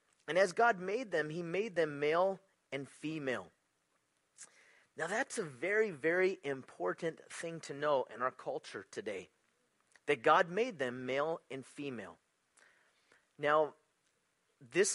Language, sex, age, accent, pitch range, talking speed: English, male, 30-49, American, 135-185 Hz, 135 wpm